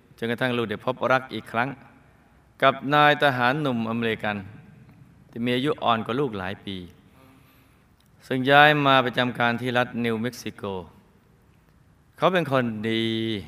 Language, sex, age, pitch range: Thai, male, 20-39, 100-130 Hz